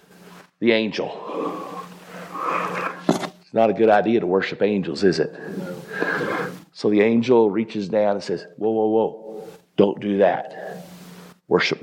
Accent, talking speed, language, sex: American, 130 wpm, English, male